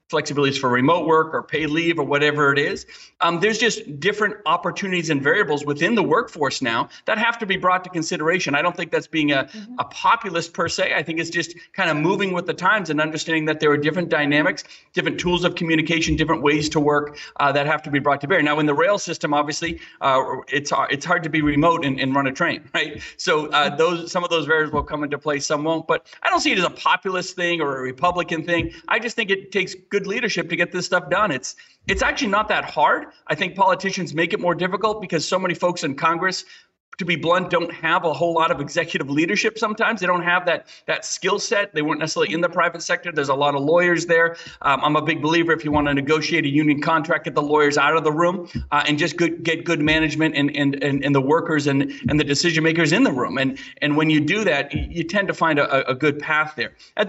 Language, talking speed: English, 250 wpm